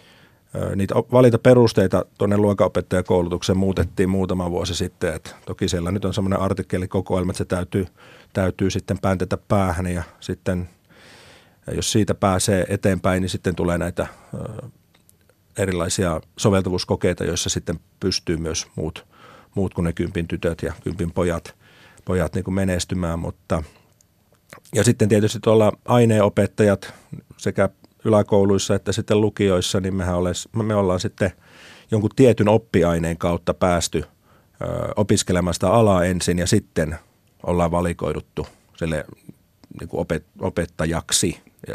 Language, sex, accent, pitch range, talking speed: Finnish, male, native, 90-100 Hz, 120 wpm